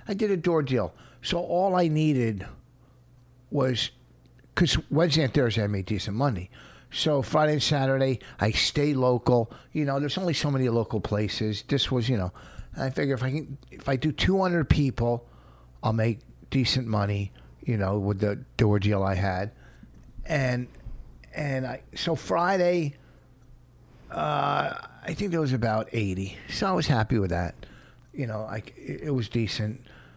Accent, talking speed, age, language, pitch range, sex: American, 165 wpm, 50-69, English, 105-135 Hz, male